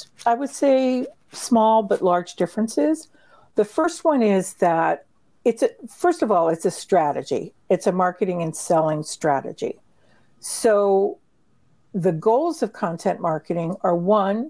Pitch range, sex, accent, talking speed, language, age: 170-230 Hz, female, American, 140 wpm, English, 60-79